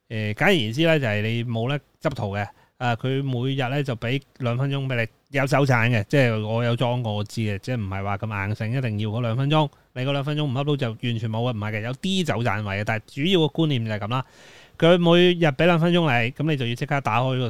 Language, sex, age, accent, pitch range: Chinese, male, 30-49, native, 110-145 Hz